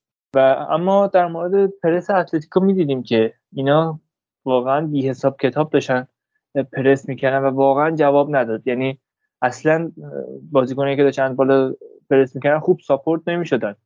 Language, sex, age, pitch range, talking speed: Persian, male, 20-39, 135-165 Hz, 135 wpm